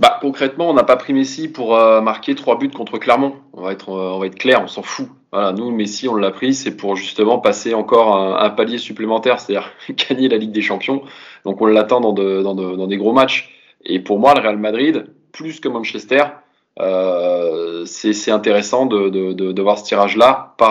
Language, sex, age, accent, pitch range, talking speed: French, male, 20-39, French, 100-135 Hz, 225 wpm